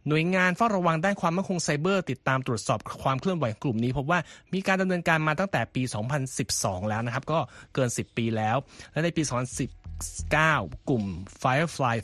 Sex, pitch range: male, 115-150 Hz